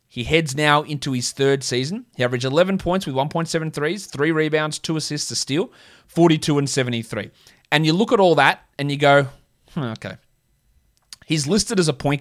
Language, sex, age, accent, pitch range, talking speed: English, male, 20-39, Australian, 120-150 Hz, 185 wpm